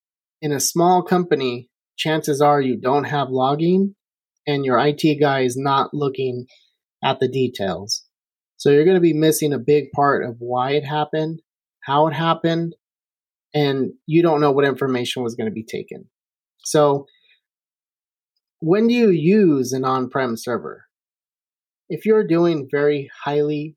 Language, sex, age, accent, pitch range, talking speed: English, male, 30-49, American, 130-155 Hz, 150 wpm